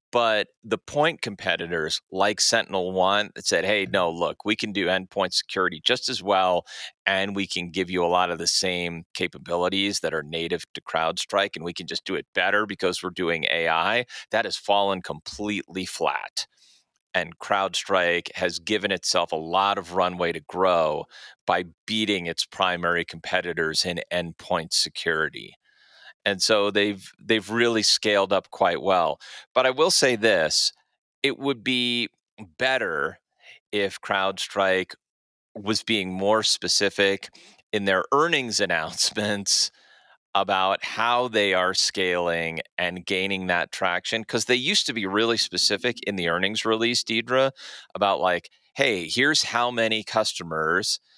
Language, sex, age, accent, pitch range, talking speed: English, male, 30-49, American, 90-110 Hz, 150 wpm